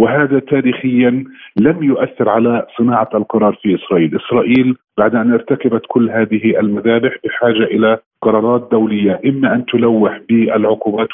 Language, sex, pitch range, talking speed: Arabic, male, 115-140 Hz, 130 wpm